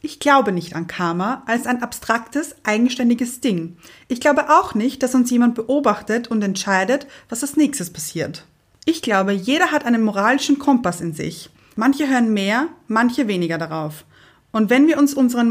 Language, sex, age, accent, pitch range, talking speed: German, female, 30-49, German, 195-260 Hz, 170 wpm